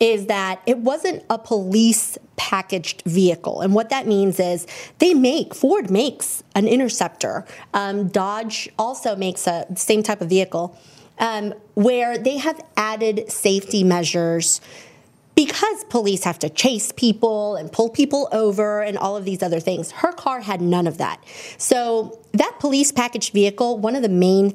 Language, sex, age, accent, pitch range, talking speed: English, female, 30-49, American, 190-240 Hz, 155 wpm